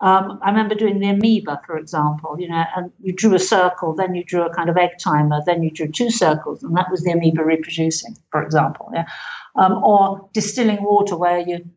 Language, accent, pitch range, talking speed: English, British, 175-215 Hz, 220 wpm